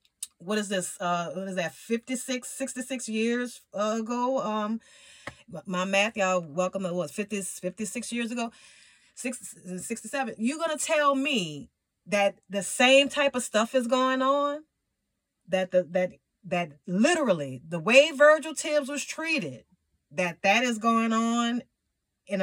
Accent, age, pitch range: American, 30-49, 180-245 Hz